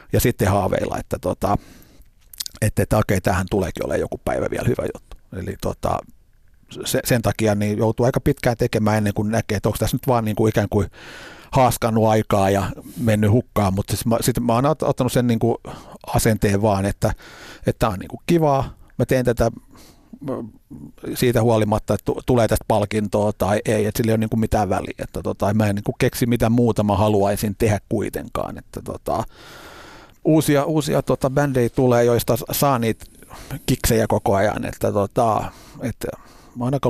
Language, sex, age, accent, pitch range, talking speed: Finnish, male, 50-69, native, 105-125 Hz, 150 wpm